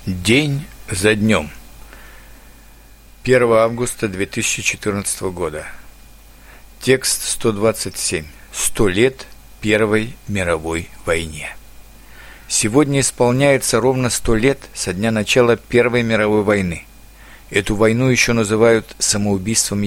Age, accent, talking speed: 50-69, native, 90 wpm